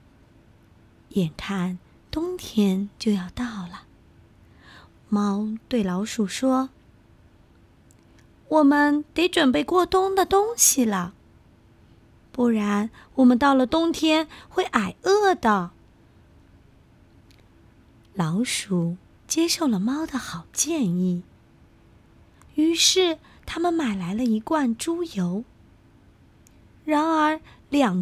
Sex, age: female, 20-39